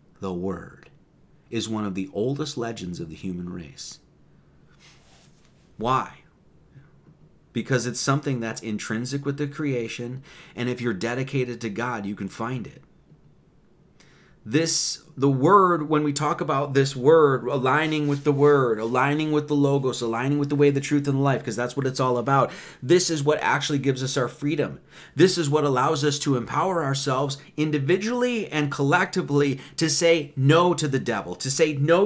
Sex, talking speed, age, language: male, 170 wpm, 30-49, English